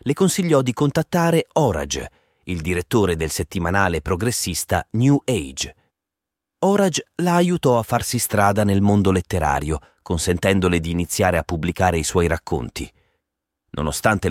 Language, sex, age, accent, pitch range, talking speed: Italian, male, 30-49, native, 85-110 Hz, 125 wpm